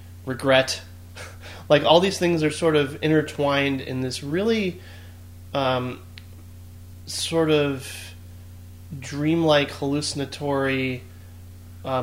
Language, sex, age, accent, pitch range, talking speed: English, male, 30-49, American, 95-140 Hz, 90 wpm